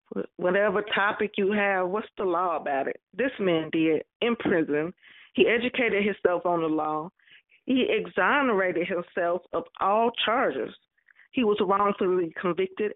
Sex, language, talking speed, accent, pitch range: female, English, 140 wpm, American, 175-215 Hz